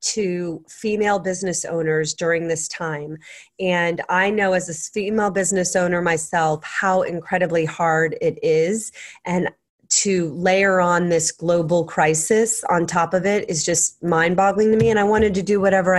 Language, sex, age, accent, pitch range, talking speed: English, female, 30-49, American, 170-190 Hz, 160 wpm